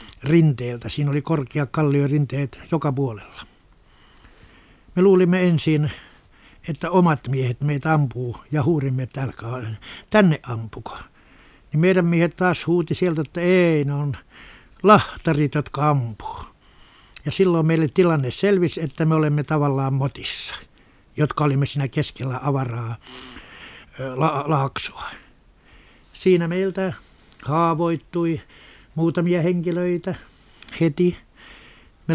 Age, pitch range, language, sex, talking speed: 60-79, 135-165 Hz, Finnish, male, 105 wpm